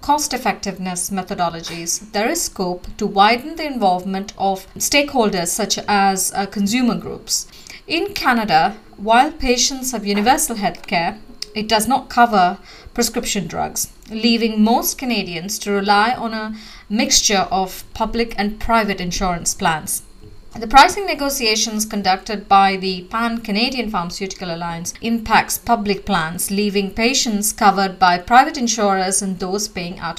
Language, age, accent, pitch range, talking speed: English, 30-49, Indian, 195-245 Hz, 130 wpm